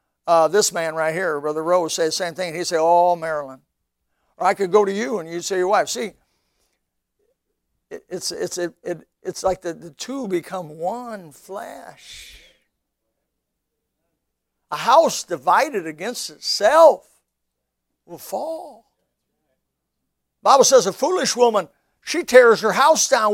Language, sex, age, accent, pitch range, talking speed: English, male, 60-79, American, 150-230 Hz, 150 wpm